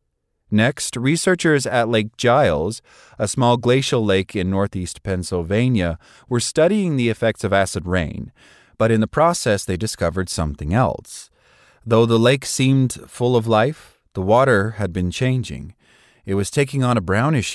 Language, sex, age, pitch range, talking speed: English, male, 30-49, 95-125 Hz, 155 wpm